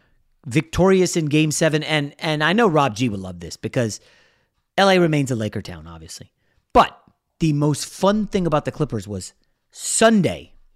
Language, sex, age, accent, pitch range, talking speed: English, male, 30-49, American, 115-190 Hz, 165 wpm